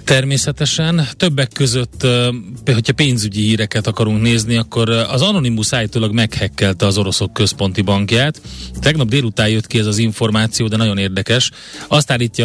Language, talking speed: Hungarian, 140 wpm